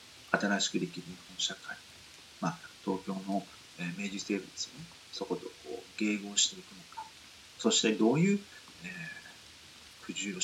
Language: Japanese